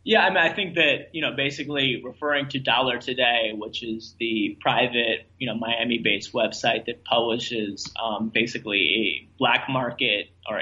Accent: American